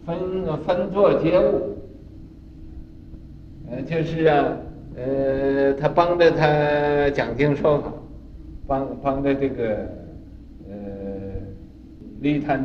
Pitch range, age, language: 110-160 Hz, 50-69, Chinese